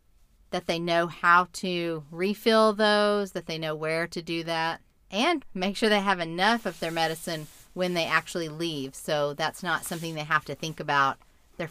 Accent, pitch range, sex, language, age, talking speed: American, 150-185 Hz, female, English, 40-59, 190 wpm